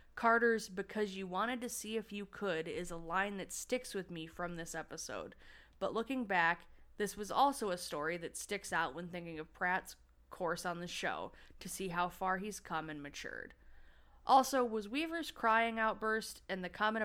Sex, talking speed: female, 190 wpm